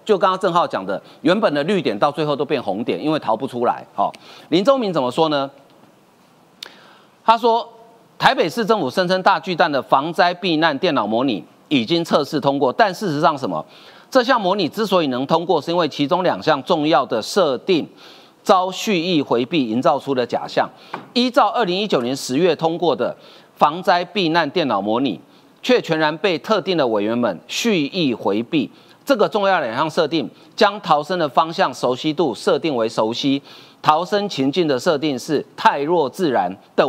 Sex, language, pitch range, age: male, Chinese, 145-195 Hz, 40-59